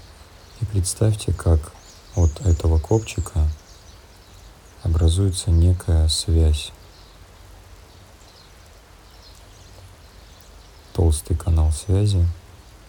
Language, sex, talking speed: Russian, male, 50 wpm